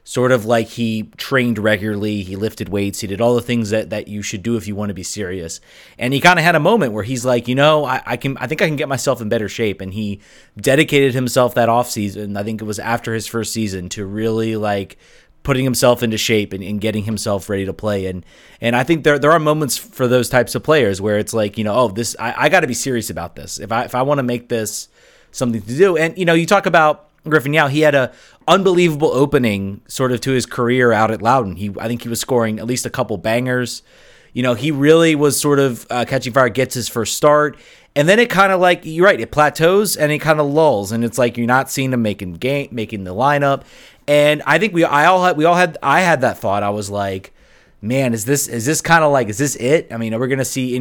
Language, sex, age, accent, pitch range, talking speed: English, male, 30-49, American, 110-145 Hz, 265 wpm